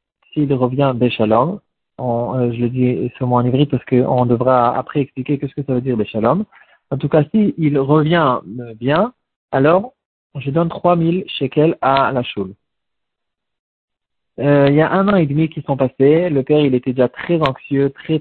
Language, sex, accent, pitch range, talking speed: French, male, French, 120-150 Hz, 190 wpm